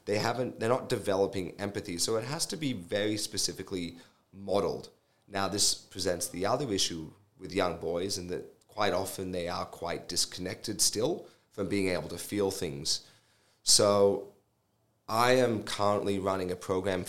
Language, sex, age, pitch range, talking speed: English, male, 30-49, 90-105 Hz, 160 wpm